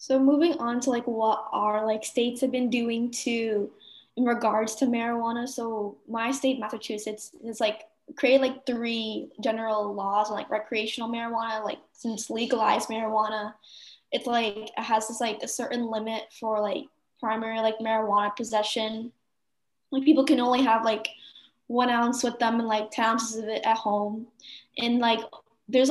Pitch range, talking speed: 220-255 Hz, 165 wpm